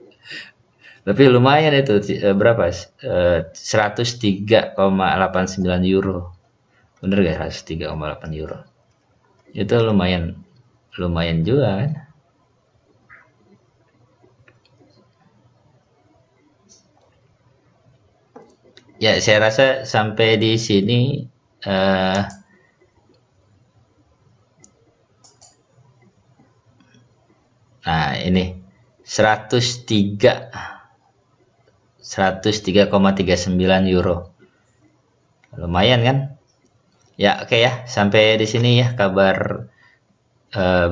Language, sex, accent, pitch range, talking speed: Indonesian, male, native, 90-120 Hz, 60 wpm